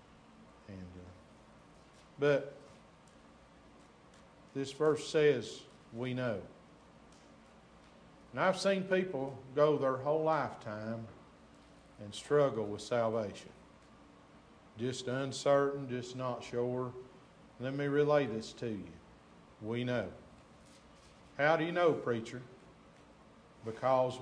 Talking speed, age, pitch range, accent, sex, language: 95 wpm, 50-69, 120-145 Hz, American, male, English